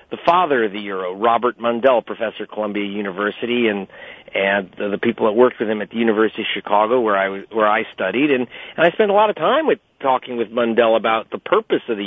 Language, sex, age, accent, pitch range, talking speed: English, male, 40-59, American, 105-125 Hz, 235 wpm